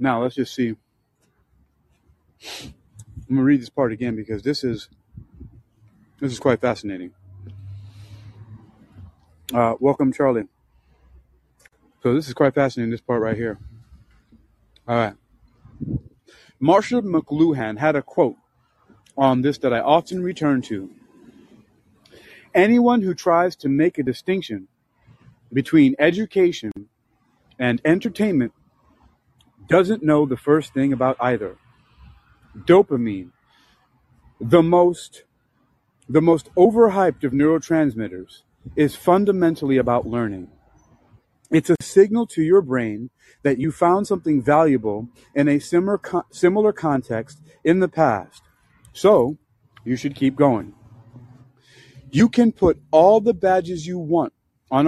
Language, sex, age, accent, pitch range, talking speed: English, male, 30-49, American, 110-160 Hz, 115 wpm